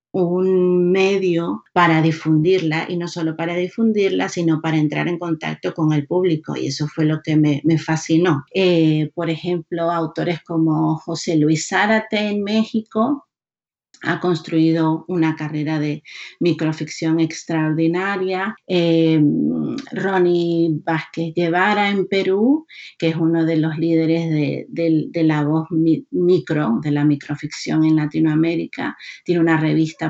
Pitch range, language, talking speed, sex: 160-190 Hz, Spanish, 135 wpm, female